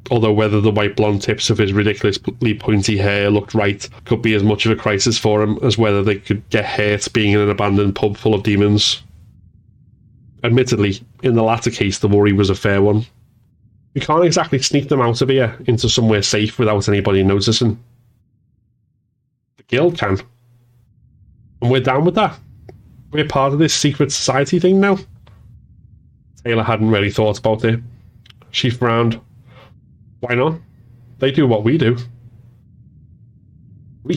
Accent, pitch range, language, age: British, 105-120 Hz, English, 20-39